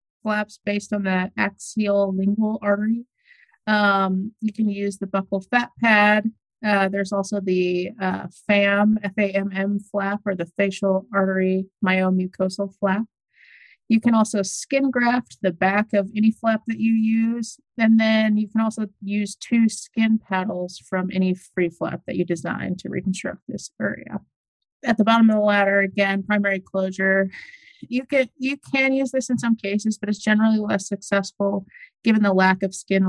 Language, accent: English, American